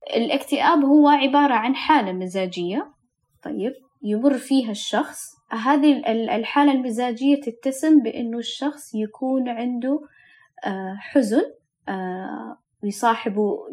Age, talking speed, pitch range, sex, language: 20-39, 85 wpm, 210-285 Hz, female, Arabic